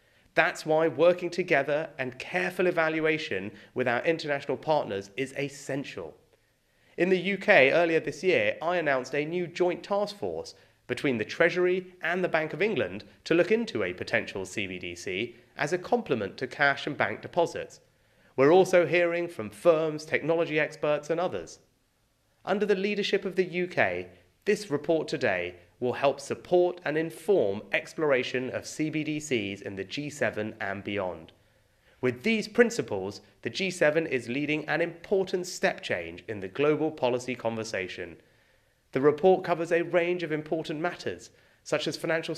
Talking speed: 150 wpm